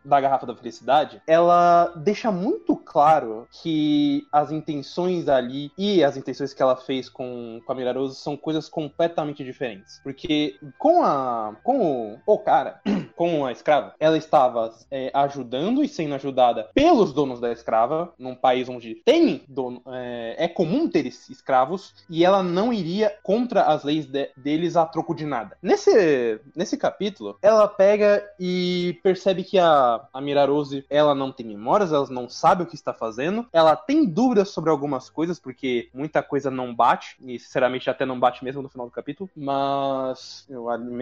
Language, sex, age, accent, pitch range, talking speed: Portuguese, male, 20-39, Brazilian, 130-200 Hz, 165 wpm